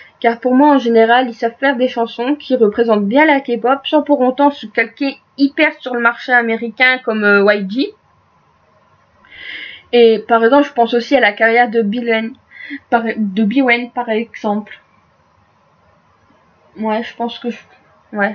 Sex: female